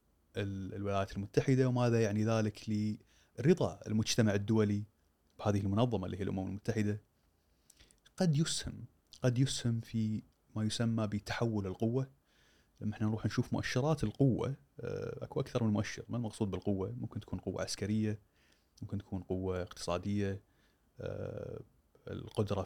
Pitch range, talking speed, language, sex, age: 100-120 Hz, 120 wpm, Arabic, male, 30-49